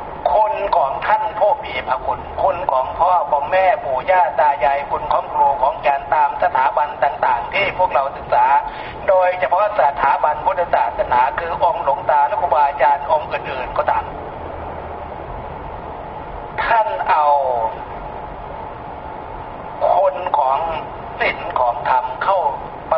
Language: Thai